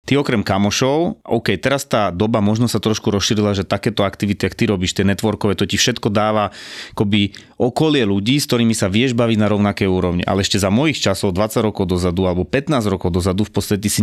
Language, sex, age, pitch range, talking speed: Slovak, male, 30-49, 100-125 Hz, 210 wpm